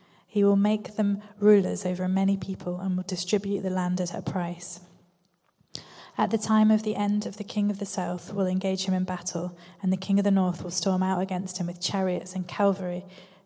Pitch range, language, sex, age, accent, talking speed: 180-200 Hz, English, female, 20-39, British, 215 wpm